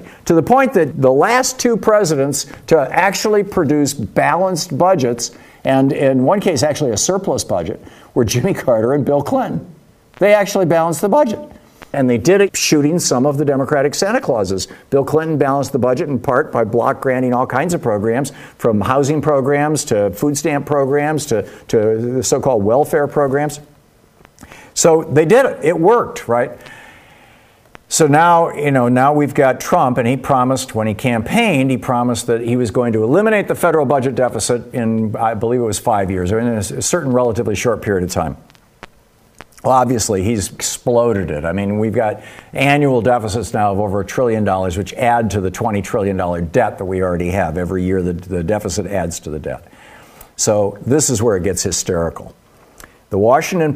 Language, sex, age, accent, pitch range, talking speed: English, male, 60-79, American, 110-150 Hz, 185 wpm